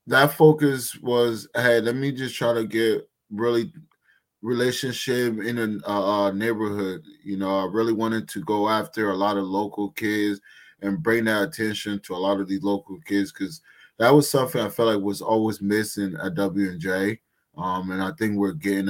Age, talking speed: 20-39, 185 wpm